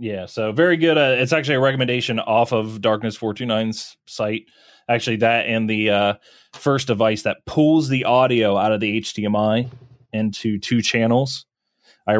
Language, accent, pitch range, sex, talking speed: English, American, 110-130 Hz, male, 160 wpm